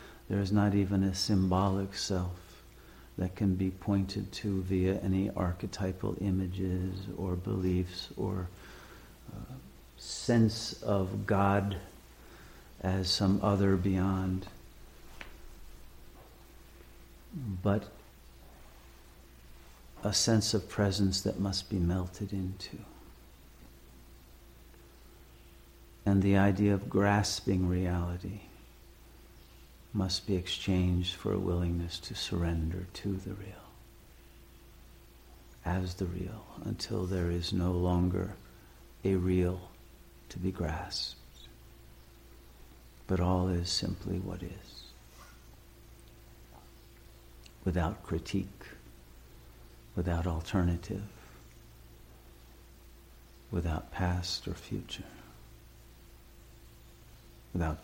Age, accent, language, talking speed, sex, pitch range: 50-69, American, English, 85 wpm, male, 70-95 Hz